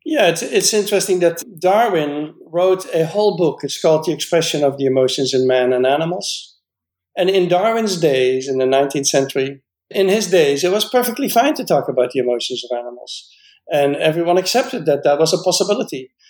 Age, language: 60-79, English